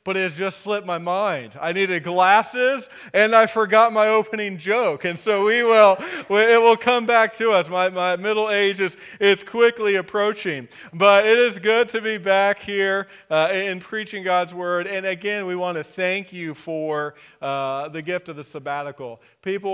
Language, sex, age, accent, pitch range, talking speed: English, male, 40-59, American, 155-195 Hz, 190 wpm